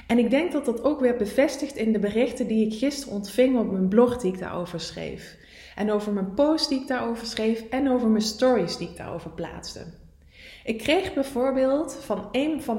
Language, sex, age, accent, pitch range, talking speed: English, female, 20-39, Dutch, 210-260 Hz, 205 wpm